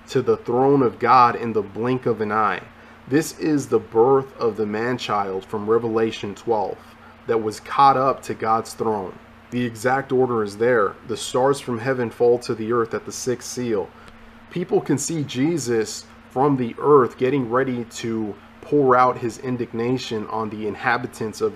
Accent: American